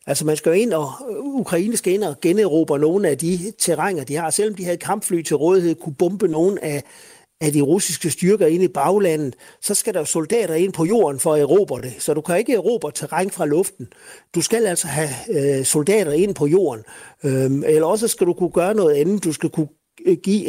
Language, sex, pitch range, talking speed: Danish, male, 150-190 Hz, 220 wpm